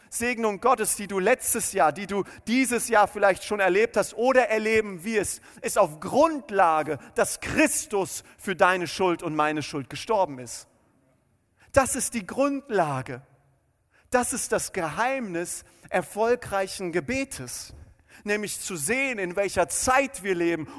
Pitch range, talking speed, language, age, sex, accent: 165-220 Hz, 140 wpm, German, 40-59, male, German